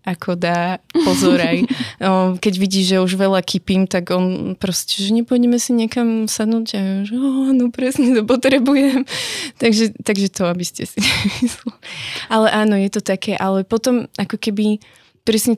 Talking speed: 160 wpm